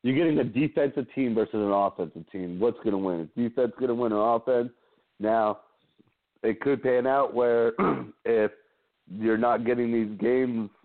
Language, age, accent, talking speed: English, 40-59, American, 175 wpm